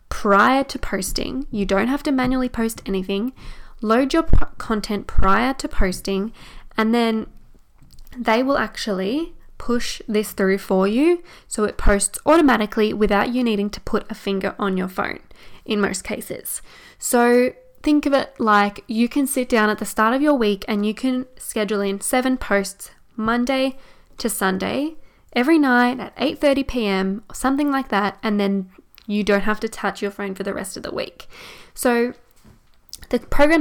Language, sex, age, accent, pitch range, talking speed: English, female, 10-29, Australian, 200-260 Hz, 175 wpm